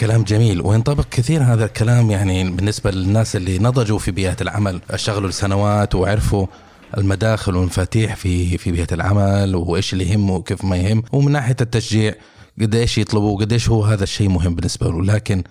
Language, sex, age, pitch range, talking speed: Arabic, male, 20-39, 100-120 Hz, 165 wpm